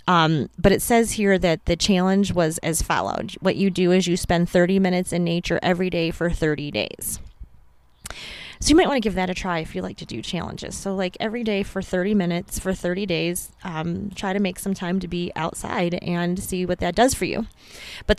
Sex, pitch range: female, 170-195 Hz